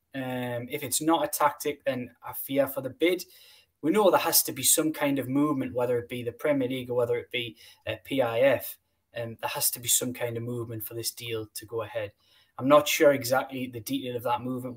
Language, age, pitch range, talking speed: English, 10-29, 125-170 Hz, 240 wpm